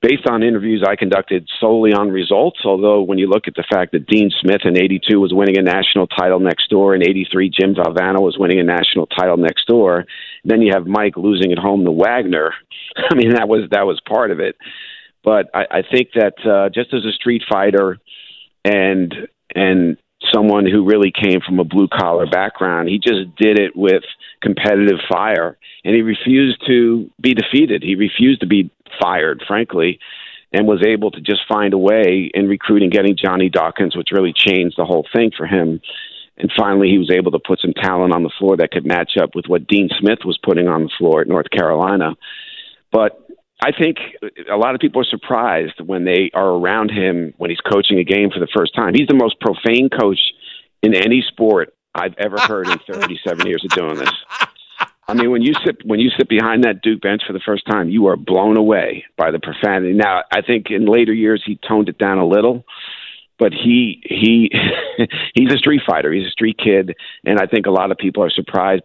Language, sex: English, male